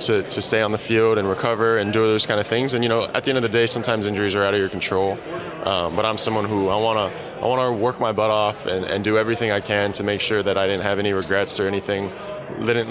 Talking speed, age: 295 wpm, 20-39